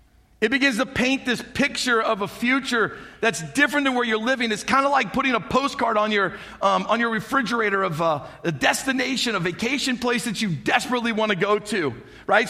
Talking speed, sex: 205 wpm, male